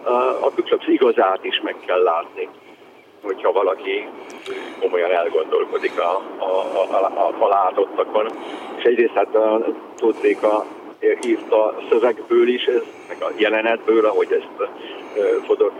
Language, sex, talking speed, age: Hungarian, male, 115 wpm, 60-79